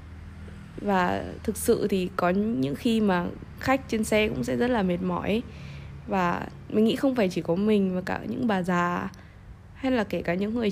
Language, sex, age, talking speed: Vietnamese, female, 20-39, 200 wpm